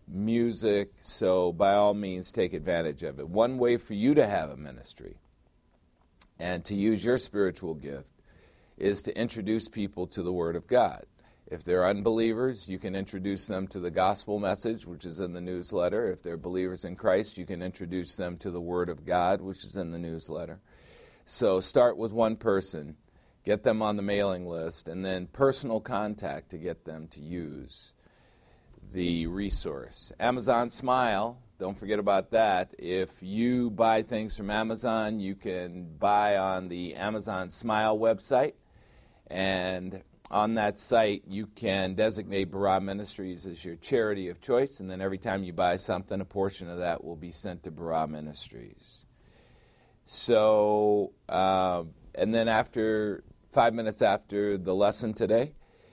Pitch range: 90-110 Hz